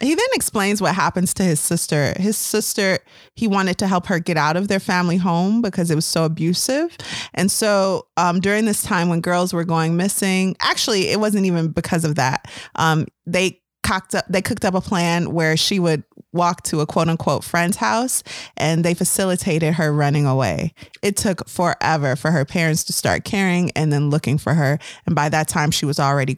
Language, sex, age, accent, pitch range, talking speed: English, female, 20-39, American, 155-195 Hz, 205 wpm